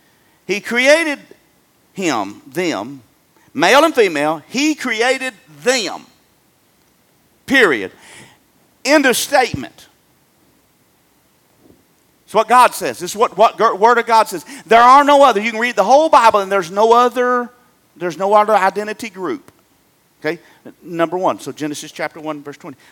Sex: male